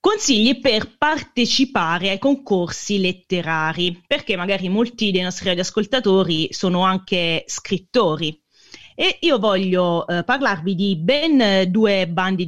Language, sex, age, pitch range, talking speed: Italian, female, 30-49, 175-230 Hz, 115 wpm